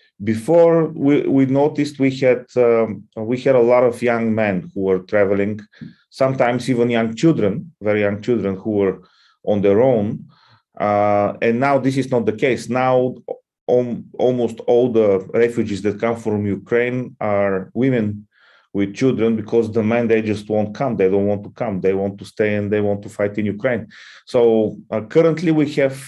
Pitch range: 105-135 Hz